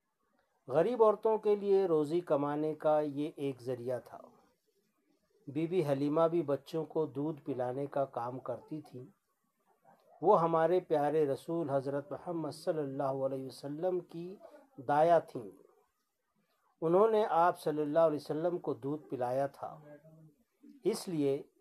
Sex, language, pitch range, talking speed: male, Urdu, 140-180 Hz, 135 wpm